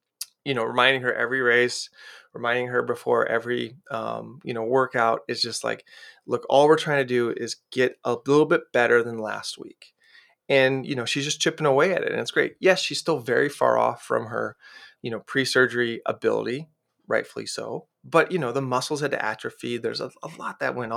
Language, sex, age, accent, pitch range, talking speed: English, male, 30-49, American, 125-155 Hz, 205 wpm